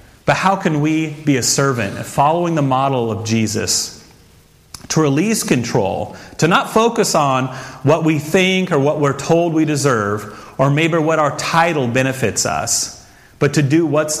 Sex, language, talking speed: male, English, 165 wpm